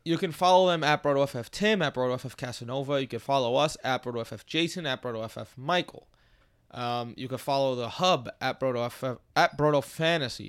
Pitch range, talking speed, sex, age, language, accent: 115-155 Hz, 175 wpm, male, 20-39, English, American